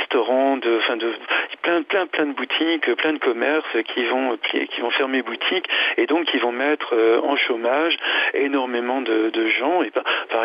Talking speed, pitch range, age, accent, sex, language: 185 wpm, 120-165 Hz, 50-69, French, male, French